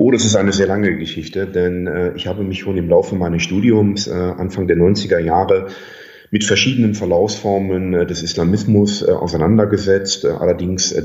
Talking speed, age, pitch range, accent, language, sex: 180 wpm, 40-59, 90-105 Hz, German, German, male